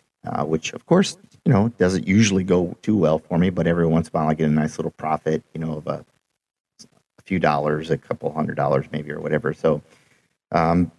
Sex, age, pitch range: male, 40-59, 80-90 Hz